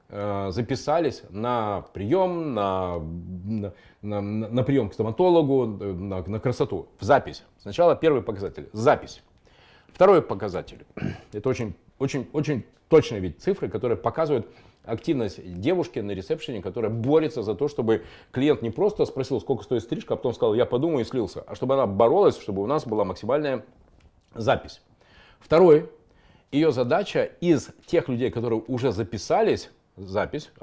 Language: Russian